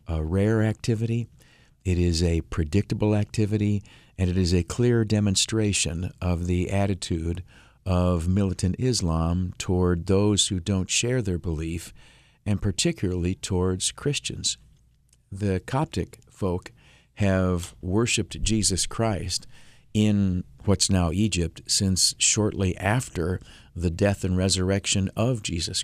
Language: English